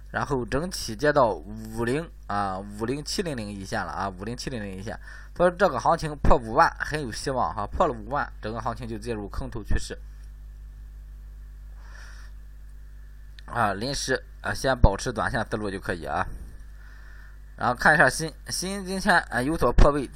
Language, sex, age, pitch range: Chinese, male, 20-39, 95-130 Hz